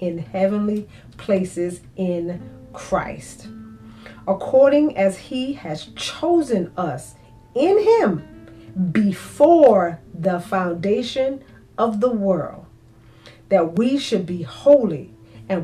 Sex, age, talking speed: female, 40-59, 95 wpm